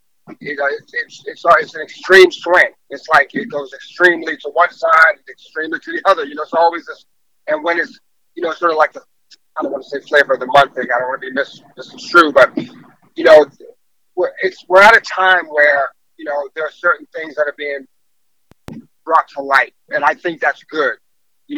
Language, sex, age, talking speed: English, male, 30-49, 230 wpm